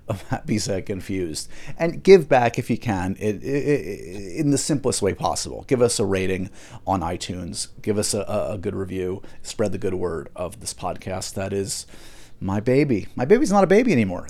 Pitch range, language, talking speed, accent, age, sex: 95-150 Hz, English, 195 wpm, American, 30-49, male